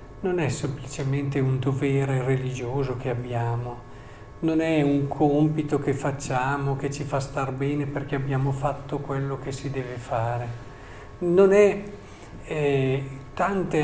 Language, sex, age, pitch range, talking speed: Italian, male, 50-69, 130-160 Hz, 135 wpm